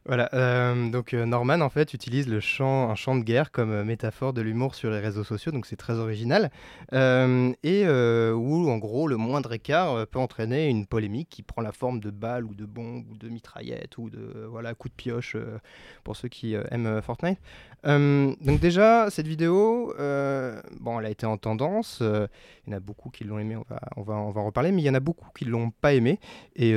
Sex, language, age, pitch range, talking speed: male, French, 20-39, 110-135 Hz, 240 wpm